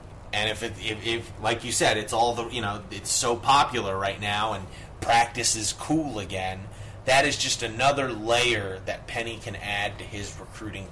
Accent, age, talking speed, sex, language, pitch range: American, 30-49, 190 wpm, male, English, 100-115 Hz